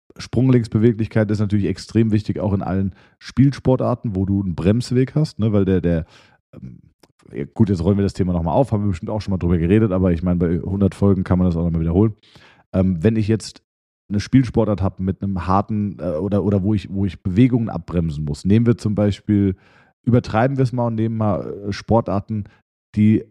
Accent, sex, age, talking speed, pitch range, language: German, male, 40-59, 210 wpm, 95-115 Hz, German